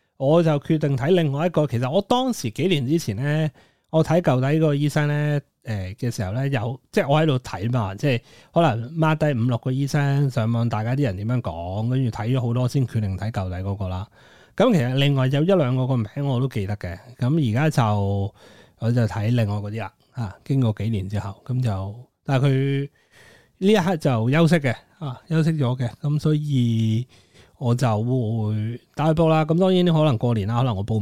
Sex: male